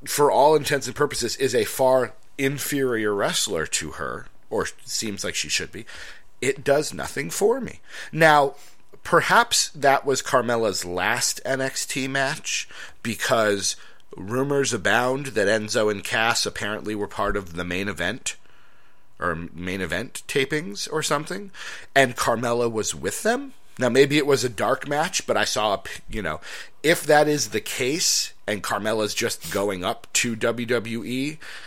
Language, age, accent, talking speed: English, 40-59, American, 150 wpm